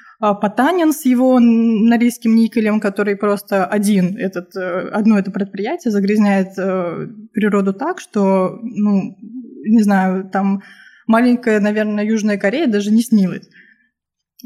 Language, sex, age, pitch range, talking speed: Russian, female, 20-39, 200-230 Hz, 110 wpm